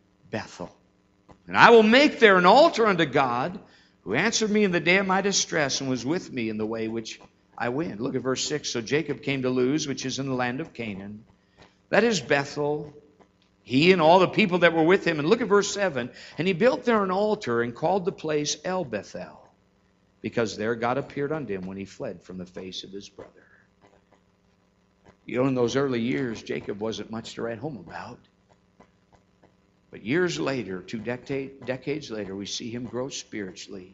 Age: 60-79